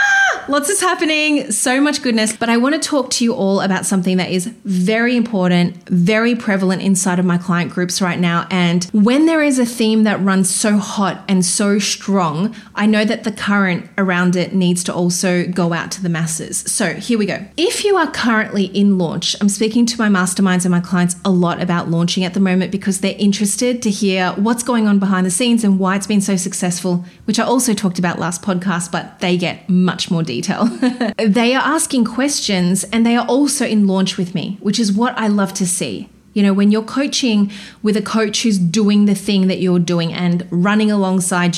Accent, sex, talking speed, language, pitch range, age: Australian, female, 215 wpm, English, 185-220 Hz, 30-49